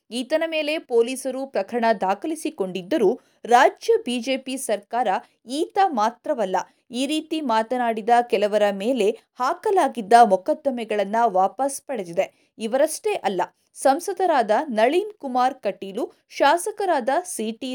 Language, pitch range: Kannada, 230-325 Hz